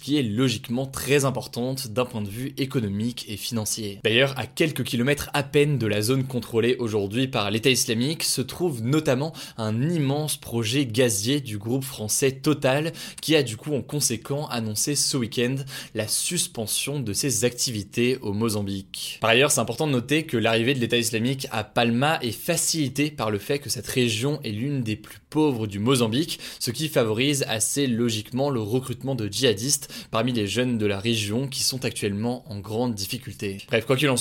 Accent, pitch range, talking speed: French, 115-140 Hz, 185 wpm